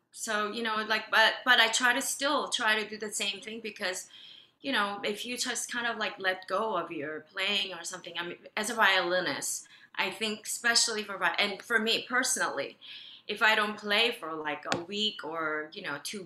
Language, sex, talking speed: English, female, 210 wpm